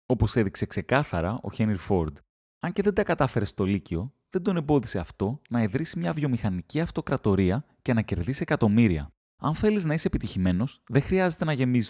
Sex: male